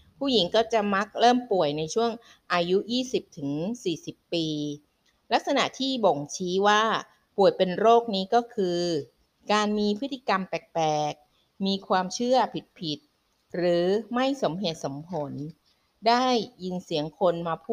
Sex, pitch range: female, 160-210 Hz